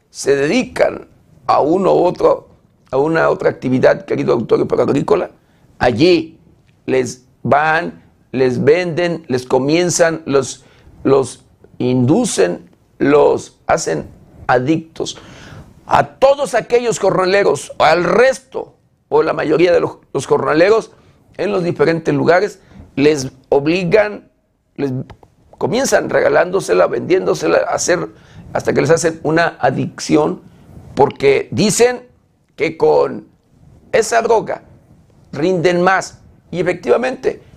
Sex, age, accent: male, 50-69, Mexican